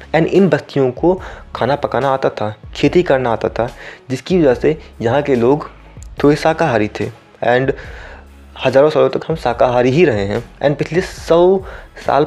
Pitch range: 115-155 Hz